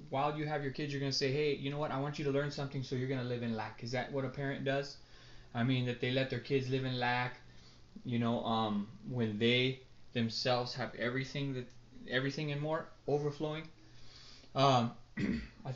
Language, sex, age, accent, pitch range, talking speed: English, male, 20-39, American, 125-160 Hz, 215 wpm